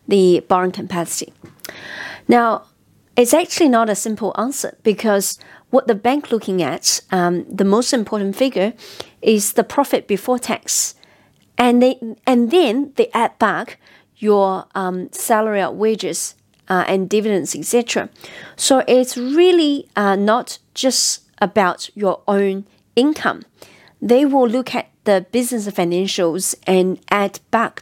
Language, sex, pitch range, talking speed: English, female, 195-250 Hz, 135 wpm